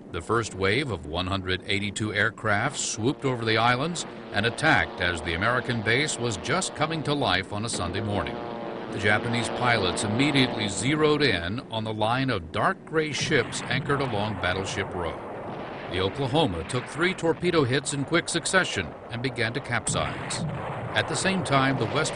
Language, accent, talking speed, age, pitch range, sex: English, American, 165 wpm, 50-69, 105-145 Hz, male